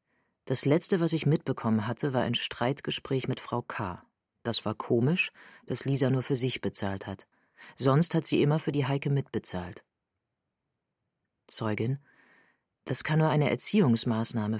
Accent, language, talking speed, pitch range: German, German, 150 wpm, 110-145 Hz